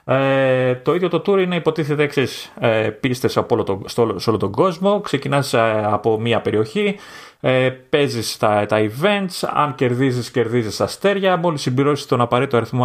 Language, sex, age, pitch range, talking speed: Greek, male, 30-49, 115-150 Hz, 150 wpm